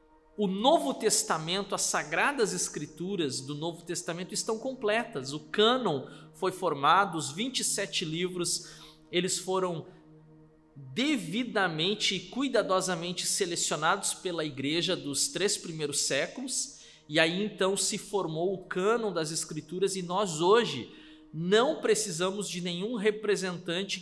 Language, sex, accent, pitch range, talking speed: Portuguese, male, Brazilian, 155-210 Hz, 115 wpm